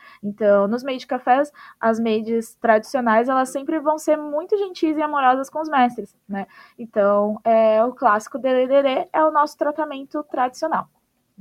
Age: 10-29